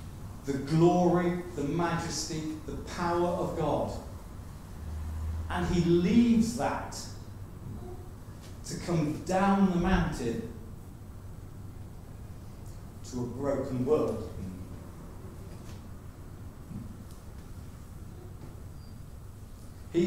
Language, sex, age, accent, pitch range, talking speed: English, male, 40-59, British, 95-135 Hz, 65 wpm